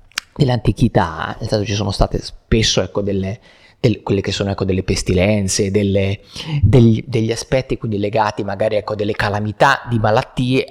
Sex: male